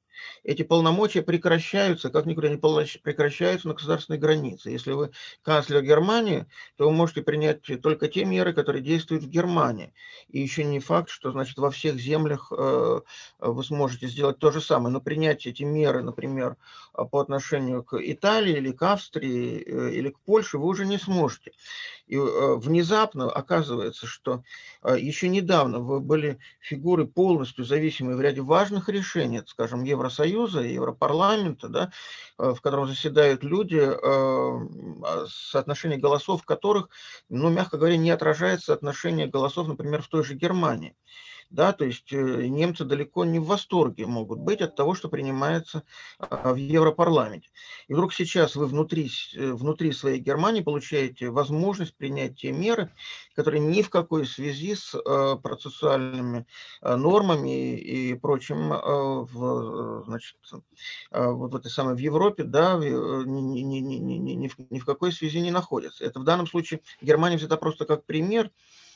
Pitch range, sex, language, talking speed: 135-170 Hz, male, Russian, 145 wpm